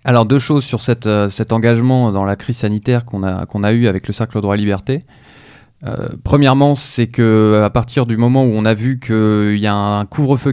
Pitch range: 110-130 Hz